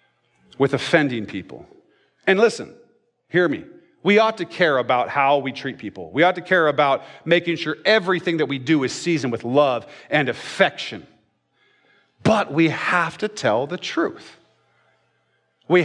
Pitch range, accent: 140-185 Hz, American